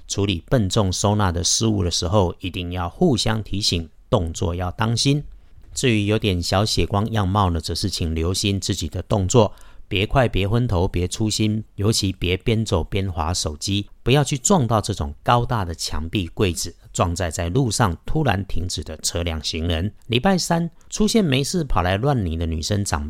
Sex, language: male, Chinese